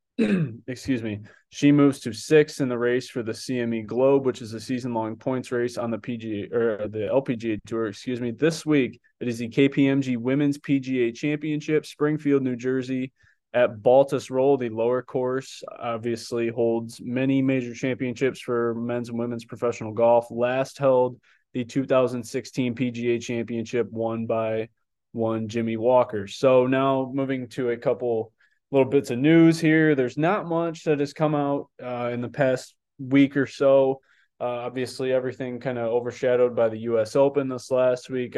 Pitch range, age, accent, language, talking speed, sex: 115-135 Hz, 20-39, American, English, 165 wpm, male